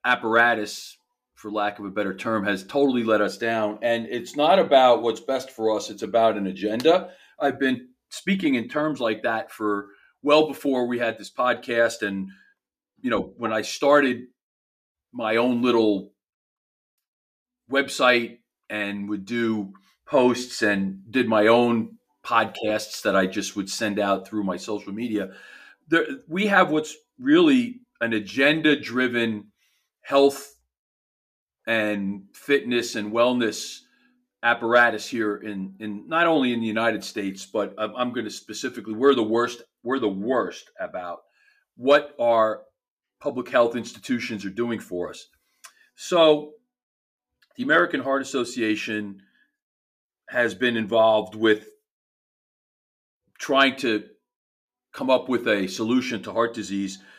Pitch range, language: 105-140 Hz, English